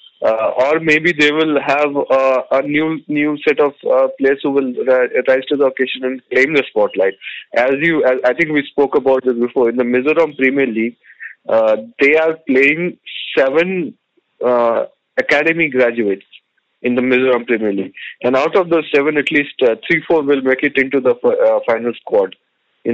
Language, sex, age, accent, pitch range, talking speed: English, male, 20-39, Indian, 130-175 Hz, 190 wpm